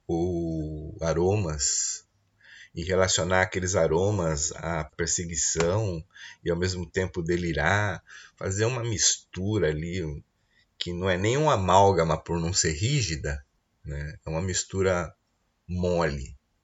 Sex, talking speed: male, 115 wpm